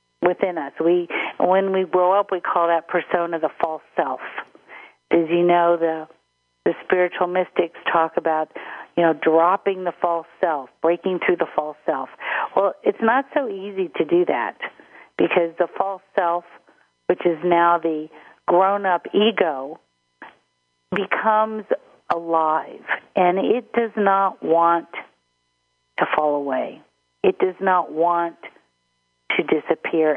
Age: 50-69